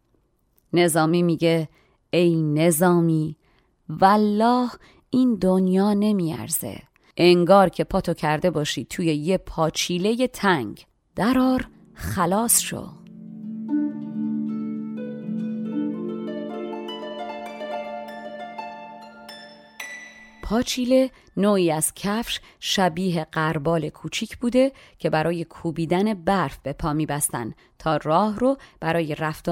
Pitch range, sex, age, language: 155-195 Hz, female, 30-49, Persian